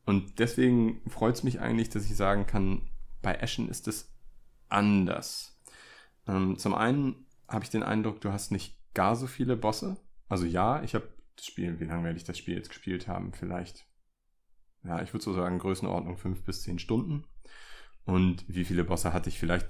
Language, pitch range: German, 90-110 Hz